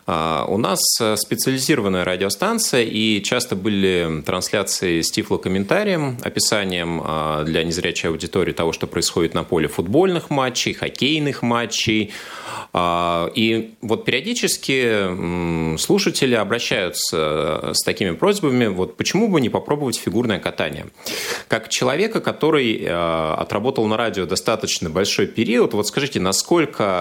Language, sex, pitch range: Russian, male, 90-120 Hz